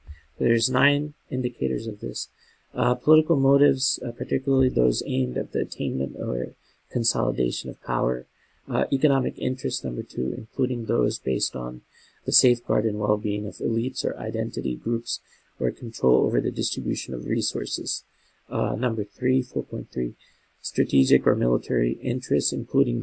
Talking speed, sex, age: 135 wpm, male, 40-59